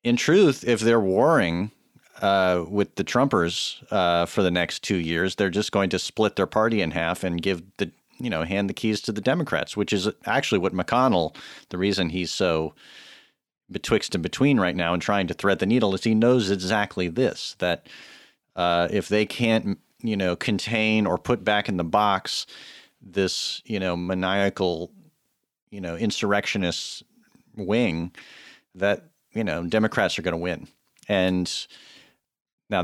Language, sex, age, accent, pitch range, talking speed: English, male, 40-59, American, 90-105 Hz, 165 wpm